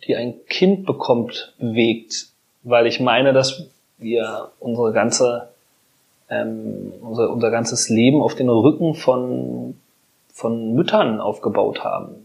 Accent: German